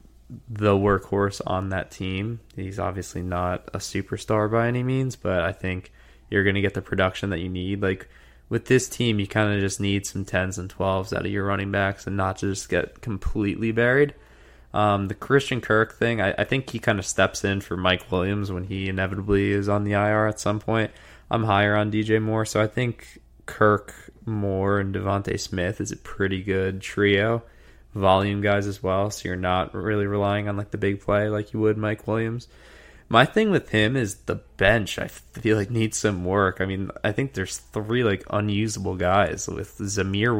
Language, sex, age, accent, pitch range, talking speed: English, male, 20-39, American, 95-110 Hz, 205 wpm